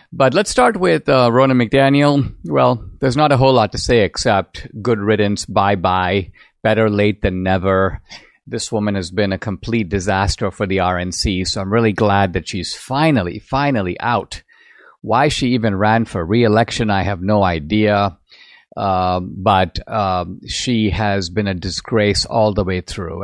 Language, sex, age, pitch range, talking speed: English, male, 50-69, 100-135 Hz, 170 wpm